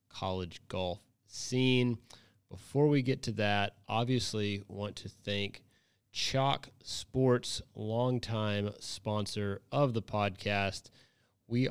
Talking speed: 100 wpm